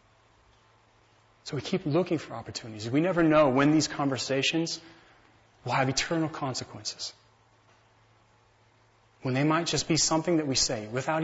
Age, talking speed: 30-49, 140 wpm